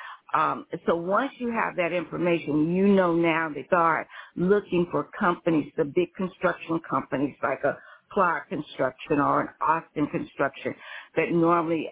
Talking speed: 150 wpm